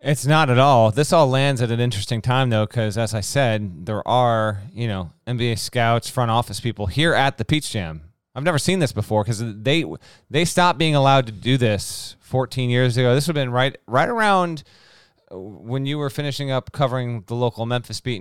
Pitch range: 105-130 Hz